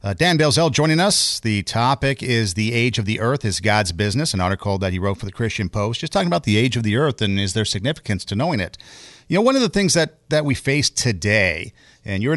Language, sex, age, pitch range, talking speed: English, male, 50-69, 105-135 Hz, 255 wpm